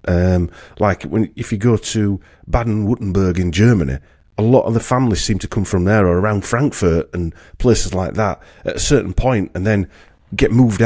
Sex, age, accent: male, 40-59, British